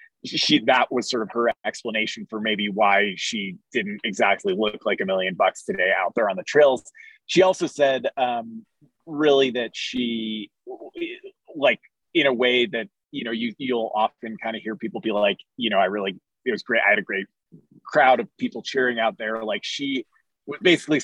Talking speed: 195 wpm